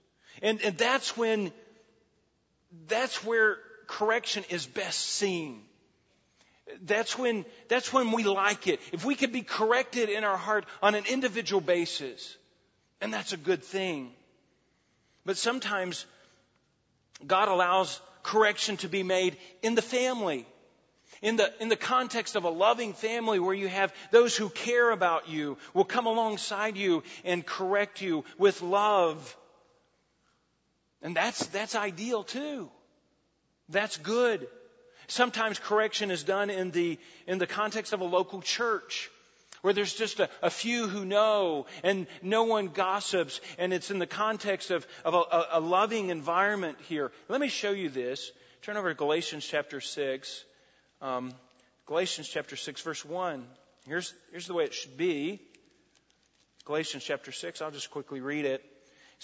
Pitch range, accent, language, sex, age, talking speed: 170-220 Hz, American, English, male, 40-59, 150 wpm